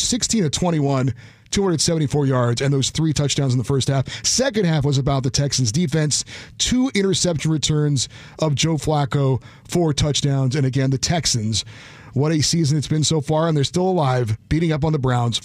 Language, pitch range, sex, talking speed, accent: English, 135-170 Hz, male, 185 wpm, American